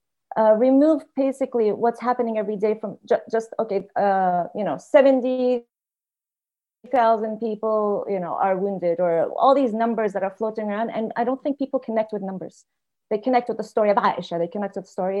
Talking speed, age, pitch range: 190 wpm, 30-49, 195-240 Hz